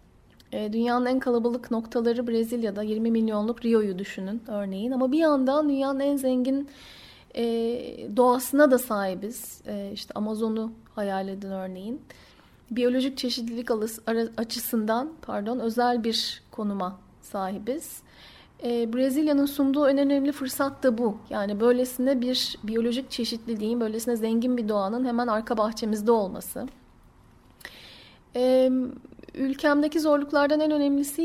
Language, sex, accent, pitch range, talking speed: Turkish, female, native, 220-255 Hz, 115 wpm